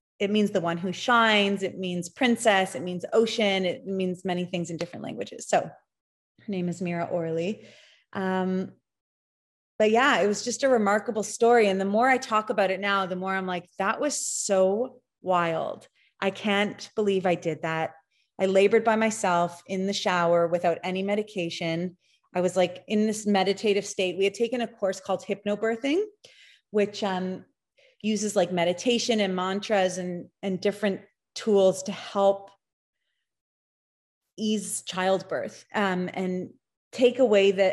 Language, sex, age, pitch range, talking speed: English, female, 30-49, 180-210 Hz, 160 wpm